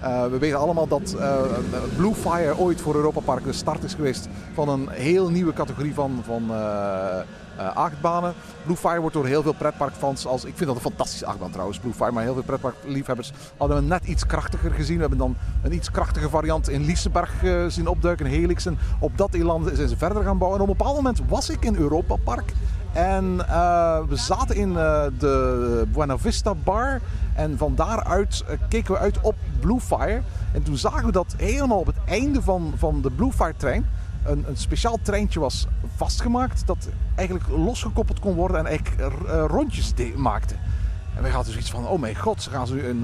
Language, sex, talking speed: Dutch, male, 210 wpm